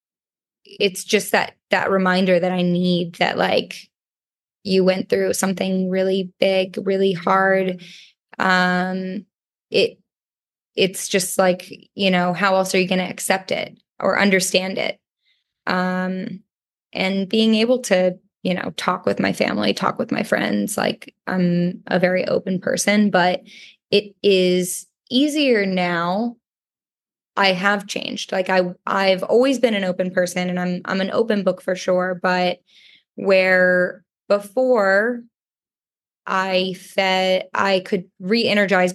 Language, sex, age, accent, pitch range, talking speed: English, female, 10-29, American, 185-205 Hz, 135 wpm